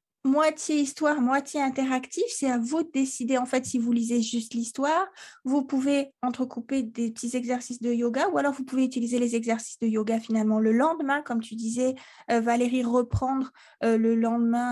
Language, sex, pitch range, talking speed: French, female, 225-270 Hz, 185 wpm